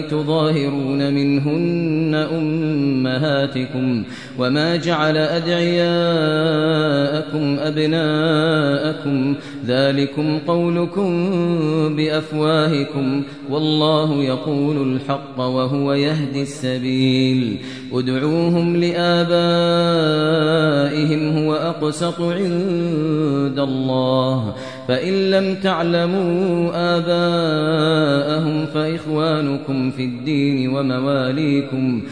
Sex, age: male, 30-49